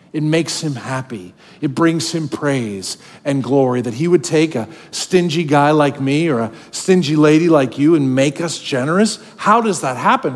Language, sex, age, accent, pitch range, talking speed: English, male, 40-59, American, 140-180 Hz, 190 wpm